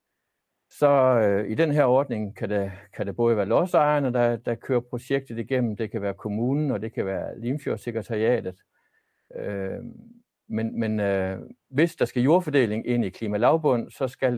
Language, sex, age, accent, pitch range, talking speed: Danish, male, 60-79, native, 105-130 Hz, 165 wpm